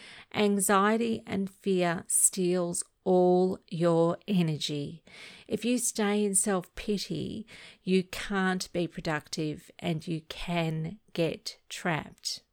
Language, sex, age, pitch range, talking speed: English, female, 40-59, 175-215 Hz, 100 wpm